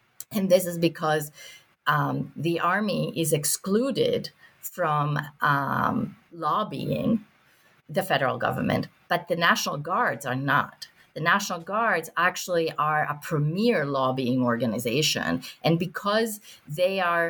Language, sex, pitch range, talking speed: English, female, 150-200 Hz, 120 wpm